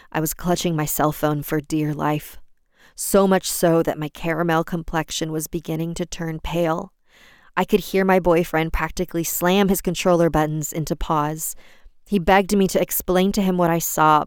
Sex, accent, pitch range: female, American, 150-175 Hz